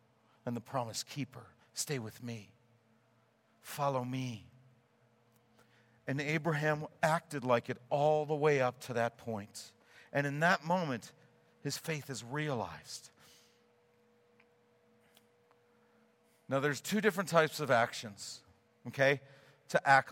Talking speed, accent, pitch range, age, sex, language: 115 wpm, American, 120-165 Hz, 50-69, male, English